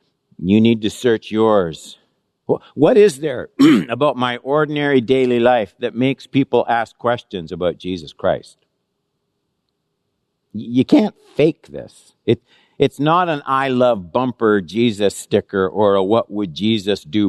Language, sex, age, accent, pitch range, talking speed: English, male, 60-79, American, 110-155 Hz, 135 wpm